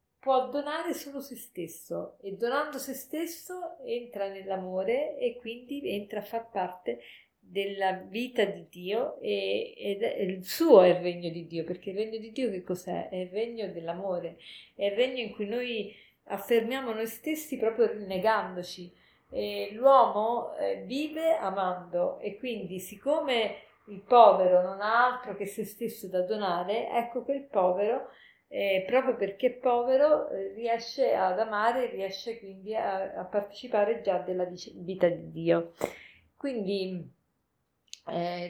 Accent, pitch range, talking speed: native, 190-240 Hz, 145 wpm